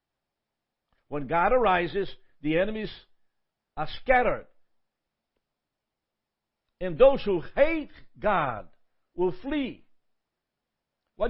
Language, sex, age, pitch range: English, male, 60-79, 170-250 Hz